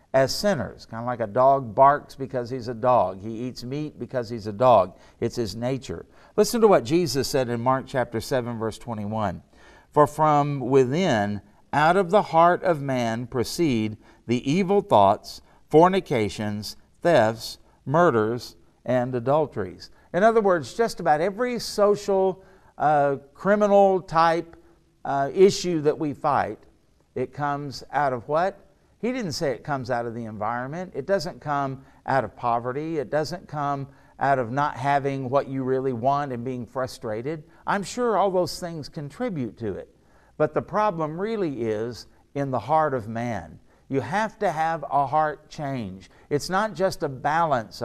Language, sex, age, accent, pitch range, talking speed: English, male, 60-79, American, 120-165 Hz, 165 wpm